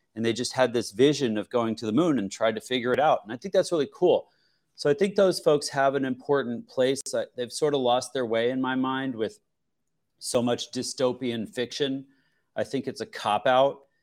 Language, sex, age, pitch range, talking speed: English, male, 30-49, 105-130 Hz, 220 wpm